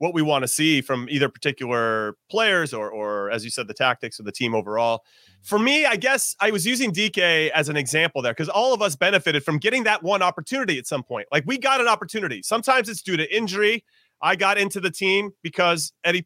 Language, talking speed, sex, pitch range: English, 230 wpm, male, 155-220 Hz